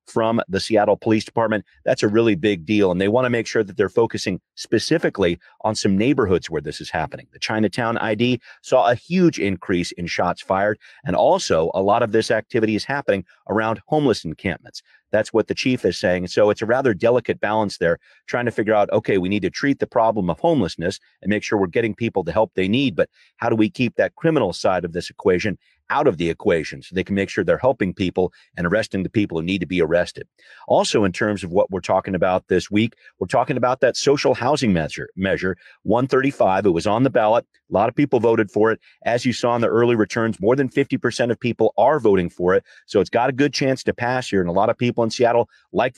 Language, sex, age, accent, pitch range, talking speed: English, male, 40-59, American, 100-120 Hz, 235 wpm